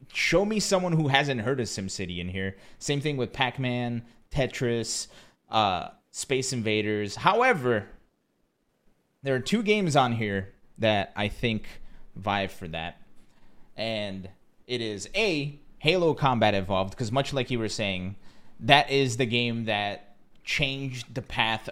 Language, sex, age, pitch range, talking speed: English, male, 30-49, 100-130 Hz, 145 wpm